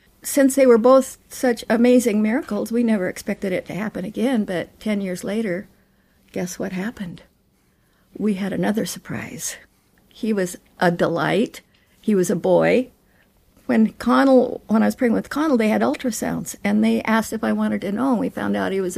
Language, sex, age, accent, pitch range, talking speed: English, female, 50-69, American, 185-240 Hz, 185 wpm